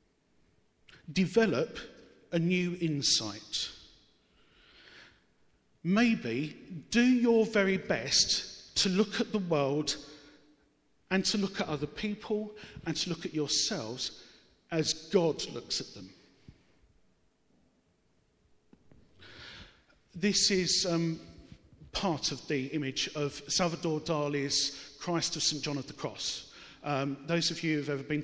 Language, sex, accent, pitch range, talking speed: English, male, British, 150-185 Hz, 115 wpm